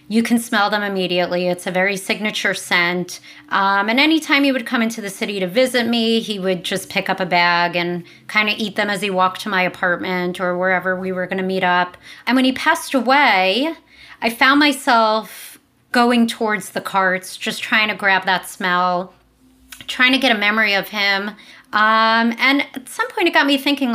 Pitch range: 185-235 Hz